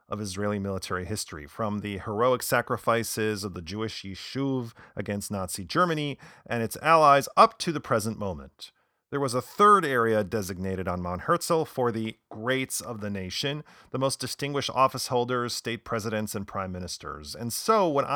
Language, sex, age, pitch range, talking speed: English, male, 40-59, 100-130 Hz, 170 wpm